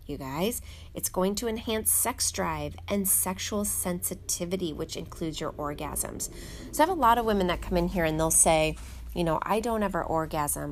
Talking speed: 195 wpm